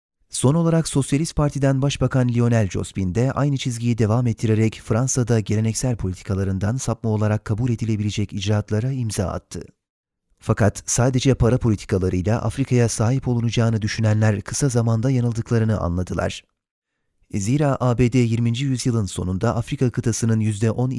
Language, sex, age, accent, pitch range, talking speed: Turkish, male, 30-49, native, 100-120 Hz, 120 wpm